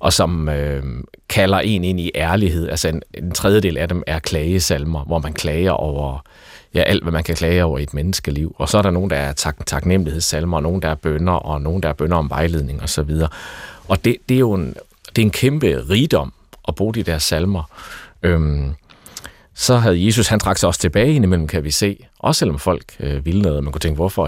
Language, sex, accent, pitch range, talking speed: Danish, male, native, 75-95 Hz, 230 wpm